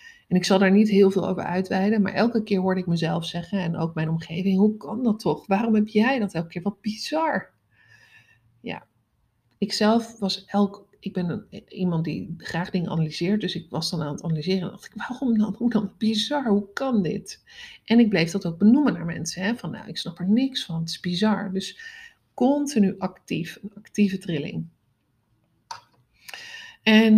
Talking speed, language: 195 wpm, Dutch